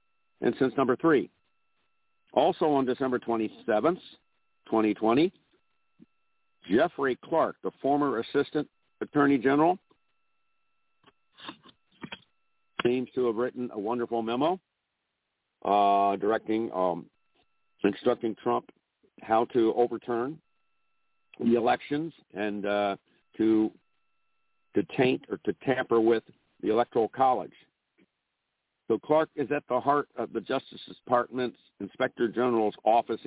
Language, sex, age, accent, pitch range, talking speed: English, male, 50-69, American, 115-145 Hz, 105 wpm